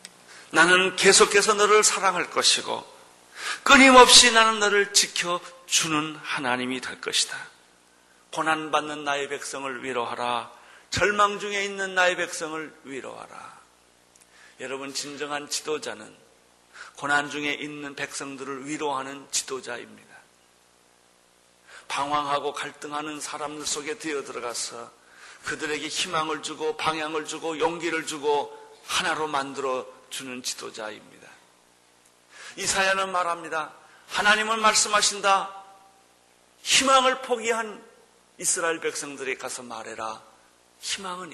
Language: Korean